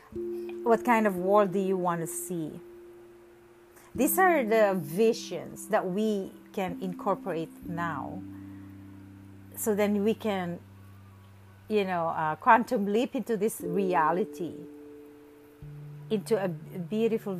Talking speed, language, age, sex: 115 wpm, English, 50-69, female